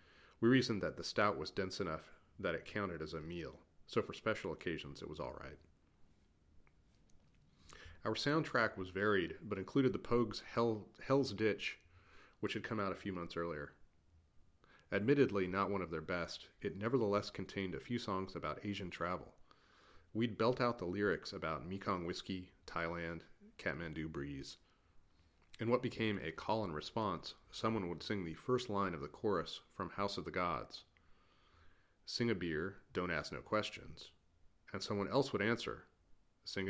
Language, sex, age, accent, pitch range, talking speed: English, male, 40-59, American, 85-110 Hz, 165 wpm